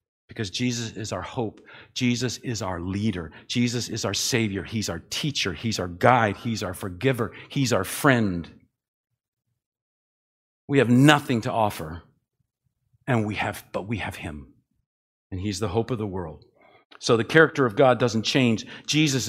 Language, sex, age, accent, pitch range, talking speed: English, male, 50-69, American, 110-135 Hz, 160 wpm